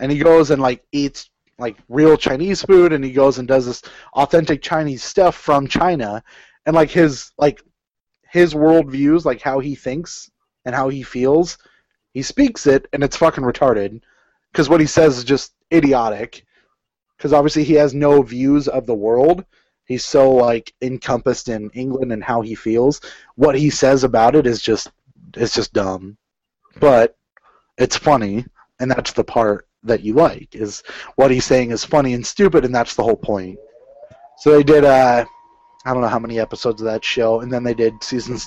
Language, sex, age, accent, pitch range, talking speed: English, male, 20-39, American, 125-160 Hz, 185 wpm